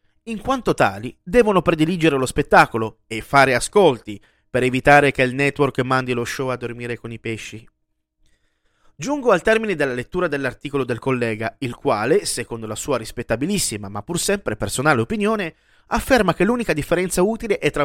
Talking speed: 165 wpm